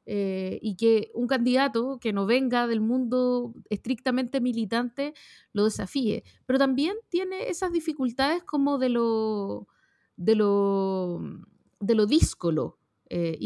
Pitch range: 215-280 Hz